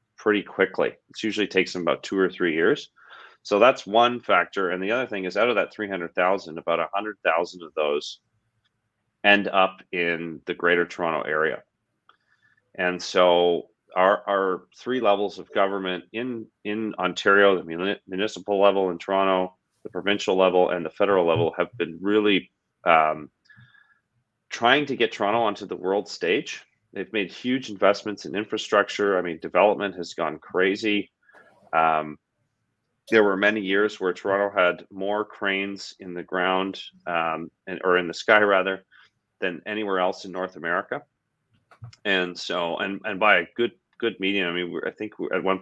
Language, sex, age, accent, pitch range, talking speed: English, male, 30-49, American, 90-105 Hz, 165 wpm